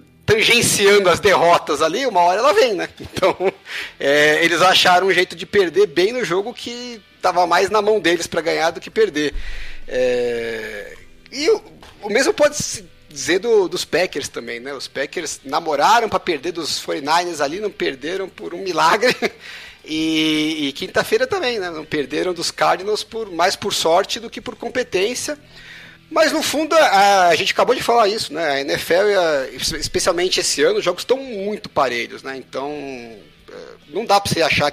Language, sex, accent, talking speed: Portuguese, male, Brazilian, 165 wpm